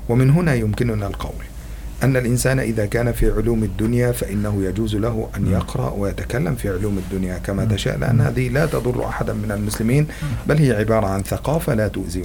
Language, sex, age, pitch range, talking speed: Indonesian, male, 50-69, 95-115 Hz, 175 wpm